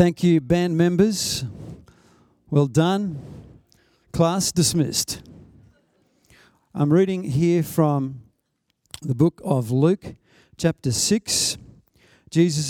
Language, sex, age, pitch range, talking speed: English, male, 50-69, 135-170 Hz, 90 wpm